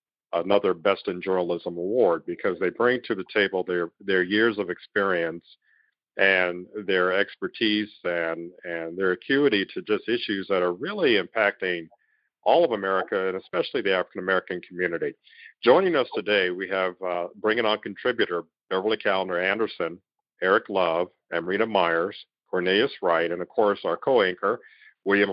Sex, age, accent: male, 50-69, American